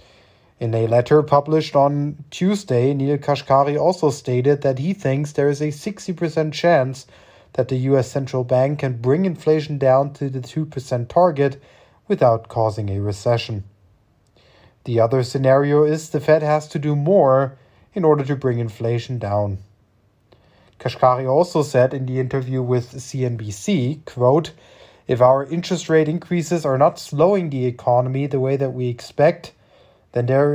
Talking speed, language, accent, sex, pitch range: 150 wpm, English, German, male, 120-150 Hz